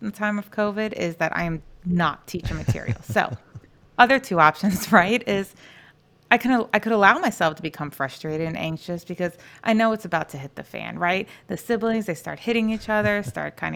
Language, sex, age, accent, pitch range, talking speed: English, female, 30-49, American, 160-200 Hz, 210 wpm